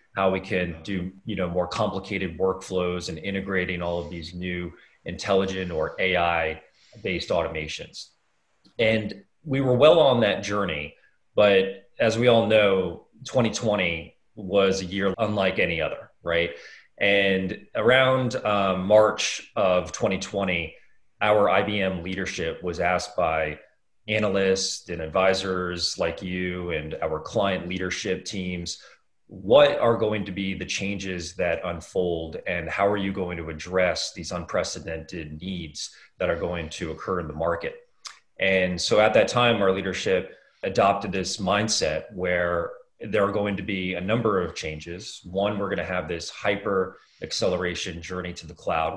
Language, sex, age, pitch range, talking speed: English, male, 30-49, 90-100 Hz, 145 wpm